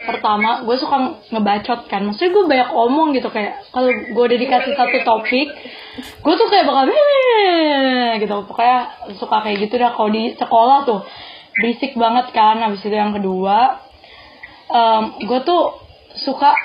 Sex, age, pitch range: female, 20-39, 220-295 Hz